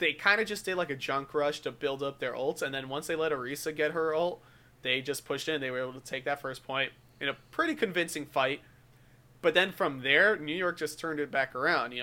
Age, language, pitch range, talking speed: 30-49, English, 135-180 Hz, 260 wpm